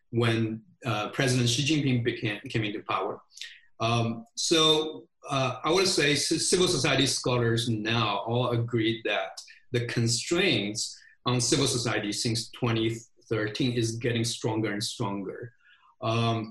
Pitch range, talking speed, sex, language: 115-135 Hz, 125 wpm, male, English